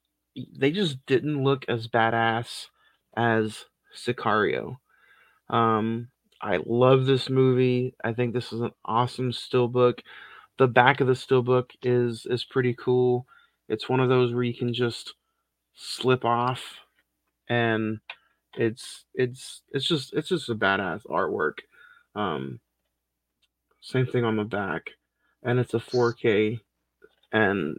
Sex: male